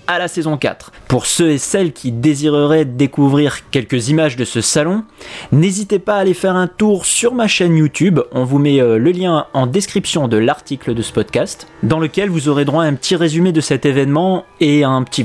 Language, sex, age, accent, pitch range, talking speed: French, male, 30-49, French, 140-195 Hz, 210 wpm